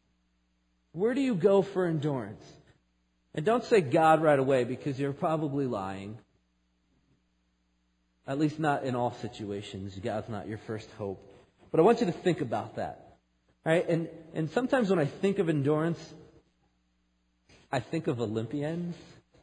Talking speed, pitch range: 150 wpm, 95-155 Hz